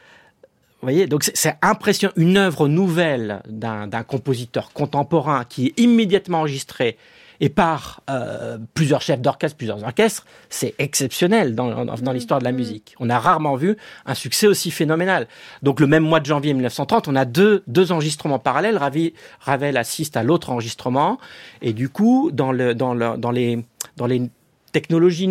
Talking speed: 165 wpm